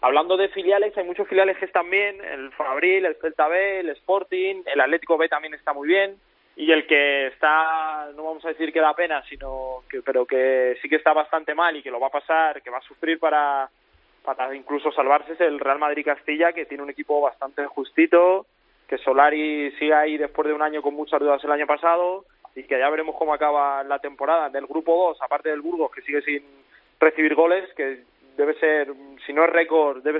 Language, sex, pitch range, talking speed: Spanish, male, 140-165 Hz, 215 wpm